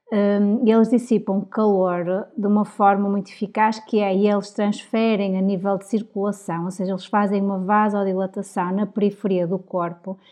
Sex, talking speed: female, 170 wpm